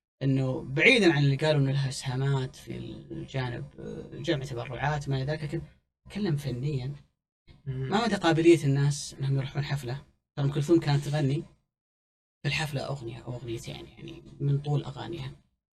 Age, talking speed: 30-49, 140 wpm